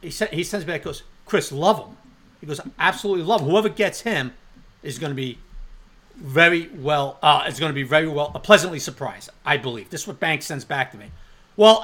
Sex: male